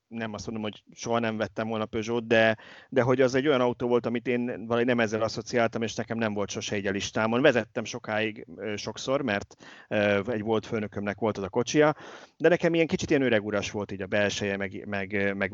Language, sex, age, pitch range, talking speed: Hungarian, male, 30-49, 100-125 Hz, 215 wpm